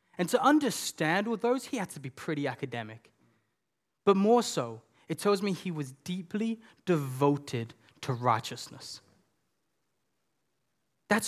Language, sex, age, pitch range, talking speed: English, male, 20-39, 150-215 Hz, 130 wpm